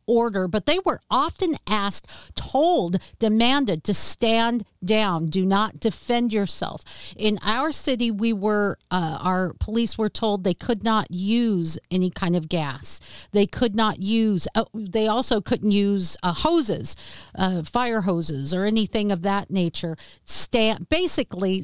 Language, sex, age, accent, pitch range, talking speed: English, female, 50-69, American, 190-235 Hz, 150 wpm